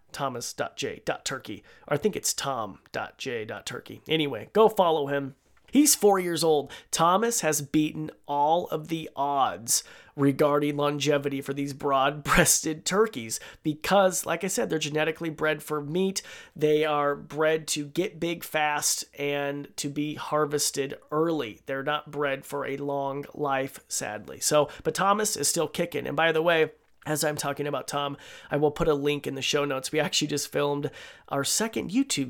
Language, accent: English, American